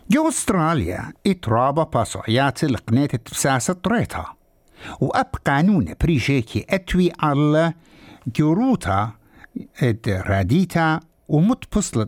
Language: English